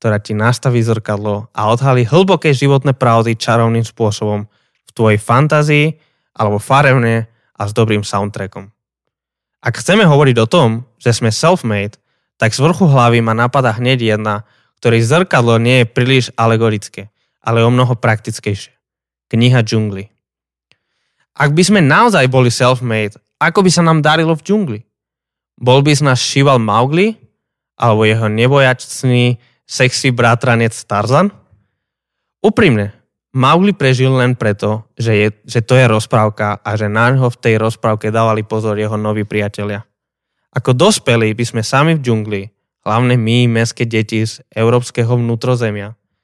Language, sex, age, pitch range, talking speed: Slovak, male, 20-39, 110-135 Hz, 140 wpm